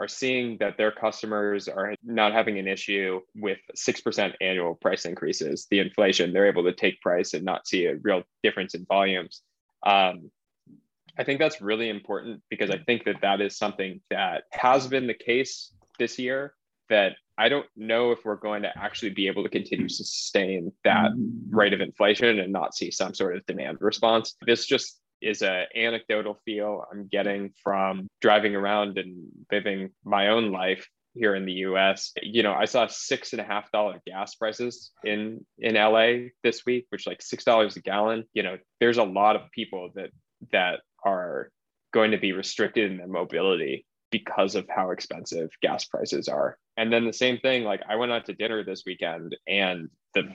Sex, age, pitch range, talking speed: male, 20-39, 100-115 Hz, 190 wpm